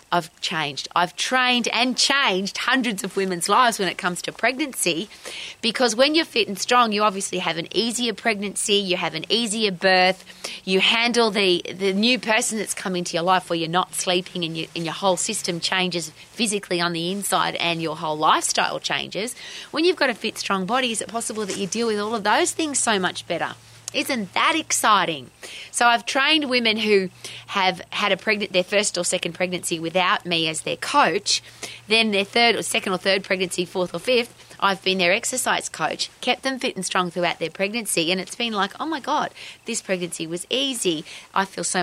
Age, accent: 30-49, Australian